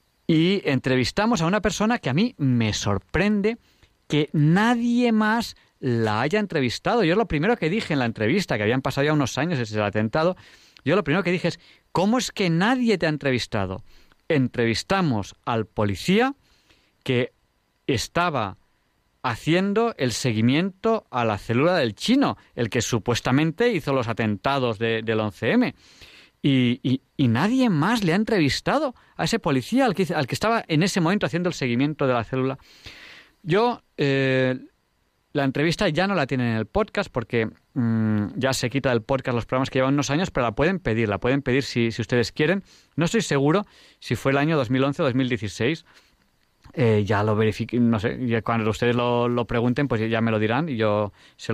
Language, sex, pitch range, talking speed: Spanish, male, 115-175 Hz, 185 wpm